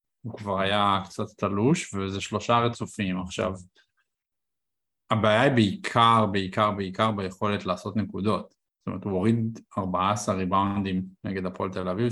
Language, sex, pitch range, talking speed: Hebrew, male, 95-115 Hz, 135 wpm